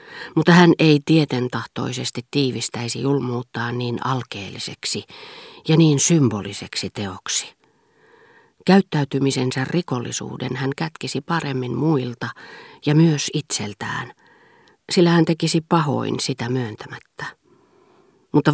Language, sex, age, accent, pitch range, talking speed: Finnish, female, 40-59, native, 120-160 Hz, 90 wpm